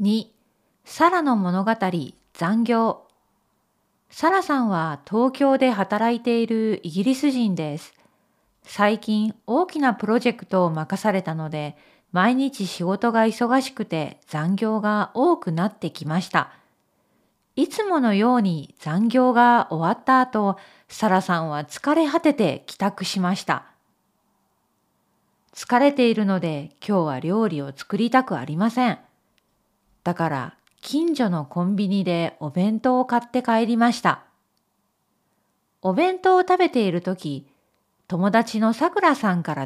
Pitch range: 180-250 Hz